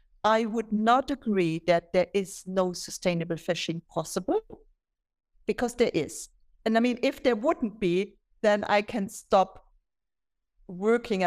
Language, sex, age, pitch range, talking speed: English, female, 60-79, 180-230 Hz, 140 wpm